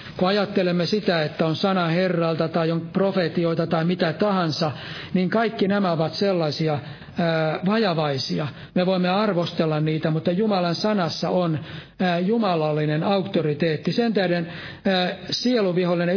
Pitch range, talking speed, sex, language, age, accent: 165-195 Hz, 120 wpm, male, Finnish, 60-79, native